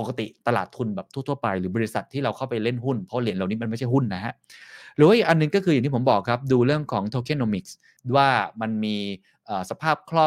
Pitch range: 105-150 Hz